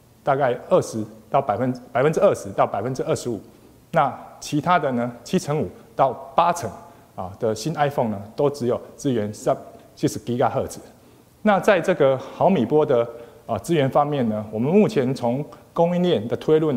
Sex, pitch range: male, 110-150 Hz